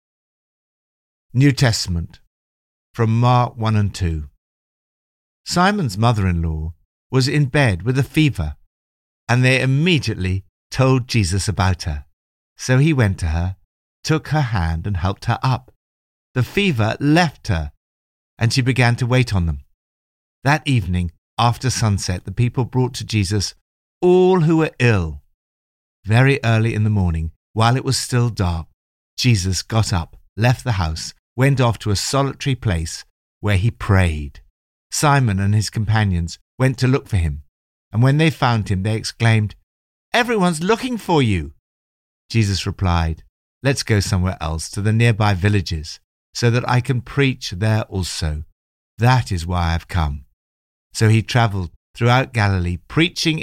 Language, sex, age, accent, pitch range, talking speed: English, male, 50-69, British, 80-130 Hz, 150 wpm